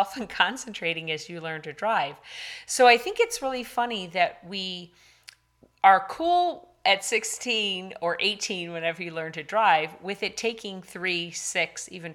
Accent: American